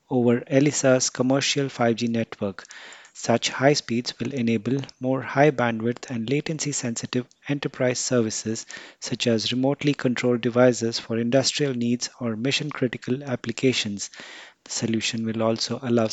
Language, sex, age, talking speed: English, male, 30-49, 115 wpm